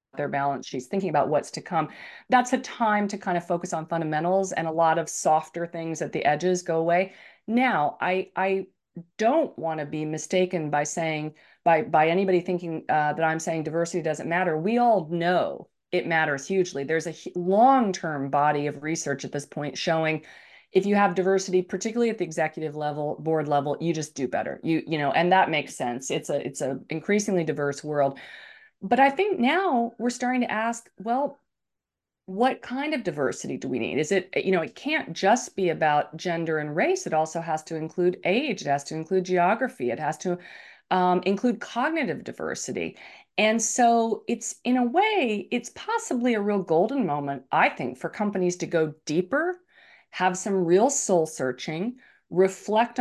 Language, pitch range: English, 160-220 Hz